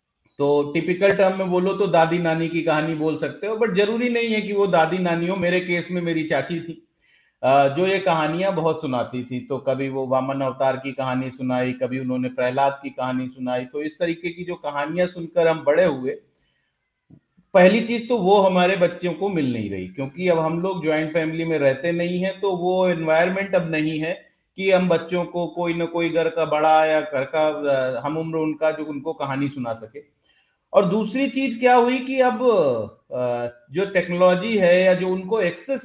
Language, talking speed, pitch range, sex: Hindi, 200 wpm, 155-215 Hz, male